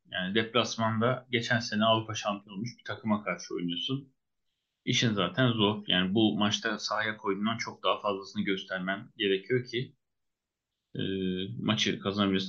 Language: Turkish